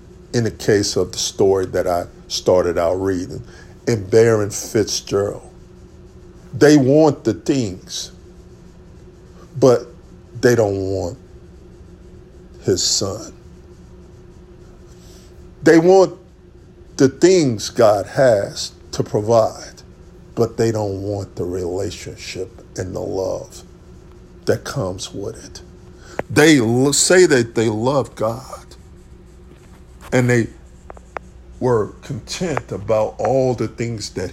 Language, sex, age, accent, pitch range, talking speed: English, male, 50-69, American, 90-120 Hz, 105 wpm